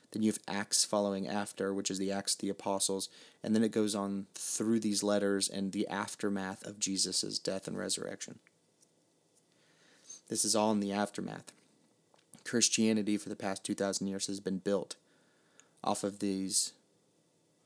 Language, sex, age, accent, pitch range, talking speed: English, male, 30-49, American, 100-105 Hz, 160 wpm